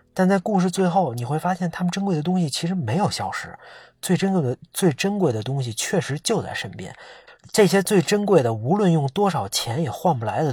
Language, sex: Chinese, male